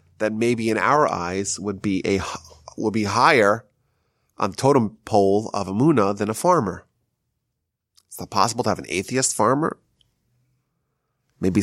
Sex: male